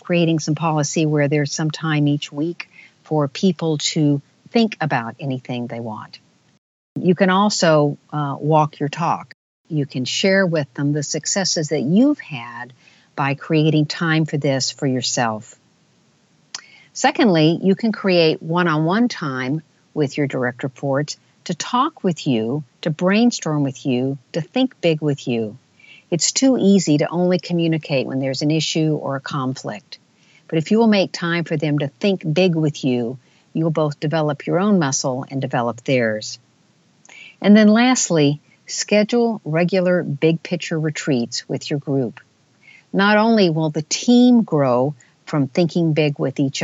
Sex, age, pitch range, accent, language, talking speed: female, 50-69, 140-180 Hz, American, English, 155 wpm